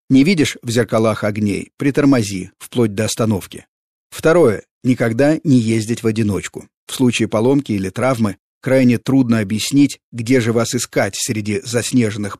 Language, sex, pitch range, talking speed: Russian, male, 110-130 Hz, 140 wpm